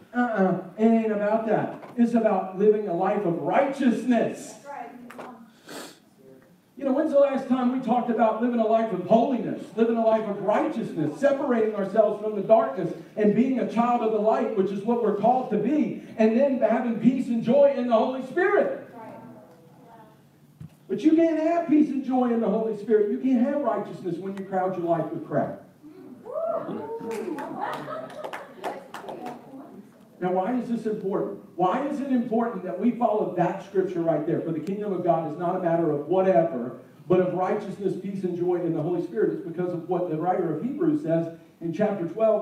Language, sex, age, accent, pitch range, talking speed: English, male, 50-69, American, 185-245 Hz, 185 wpm